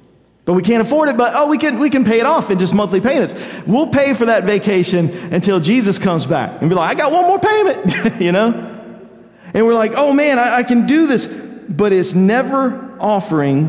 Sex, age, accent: male, 50-69, American